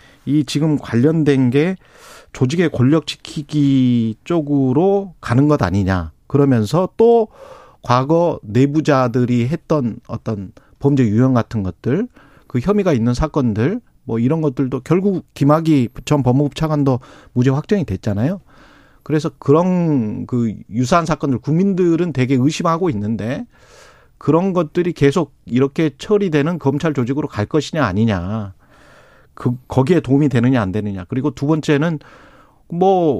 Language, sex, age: Korean, male, 40-59